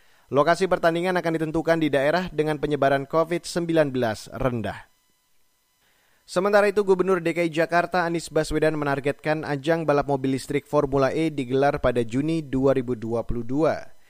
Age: 30-49